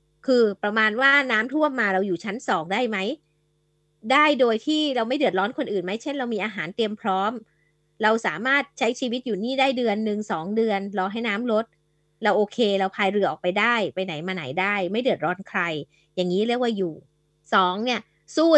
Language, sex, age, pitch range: Thai, female, 20-39, 195-265 Hz